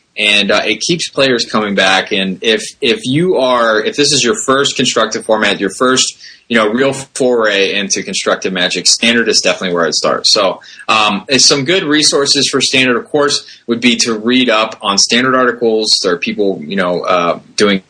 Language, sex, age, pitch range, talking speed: English, male, 20-39, 100-130 Hz, 195 wpm